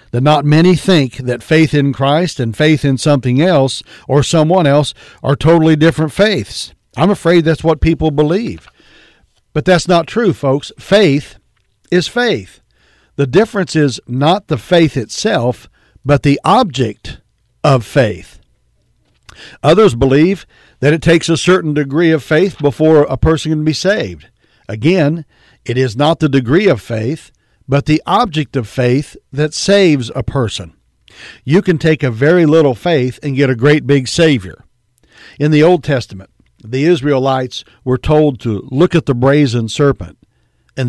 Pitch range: 125-160 Hz